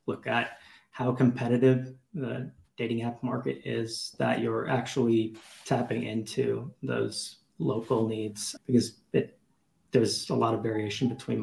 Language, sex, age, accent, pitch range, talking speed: English, male, 30-49, American, 110-130 Hz, 125 wpm